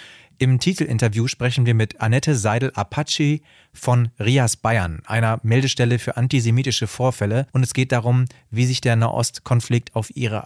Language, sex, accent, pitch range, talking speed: German, male, German, 110-130 Hz, 150 wpm